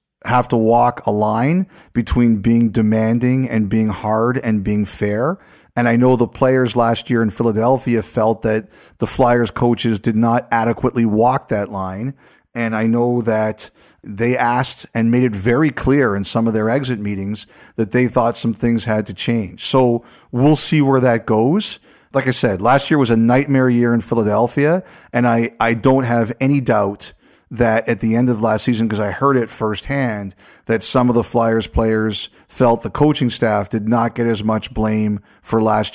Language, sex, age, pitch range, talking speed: English, male, 40-59, 110-125 Hz, 190 wpm